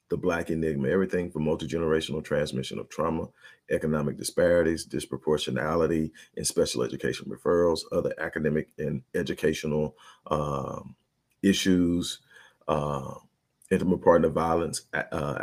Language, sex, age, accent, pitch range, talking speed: English, male, 40-59, American, 75-80 Hz, 105 wpm